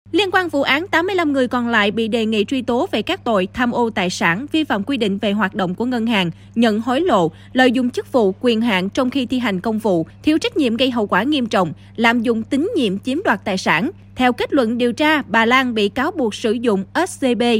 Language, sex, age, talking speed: Vietnamese, female, 20-39, 250 wpm